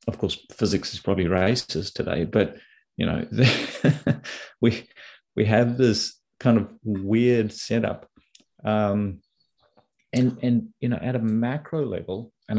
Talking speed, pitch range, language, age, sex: 140 wpm, 95-115 Hz, English, 30-49, male